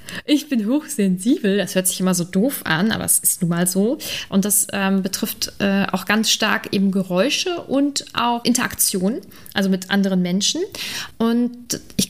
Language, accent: German, German